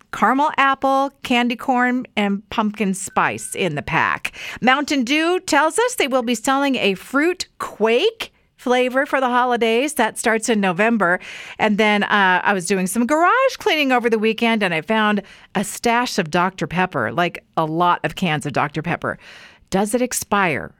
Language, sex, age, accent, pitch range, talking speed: English, female, 50-69, American, 195-270 Hz, 175 wpm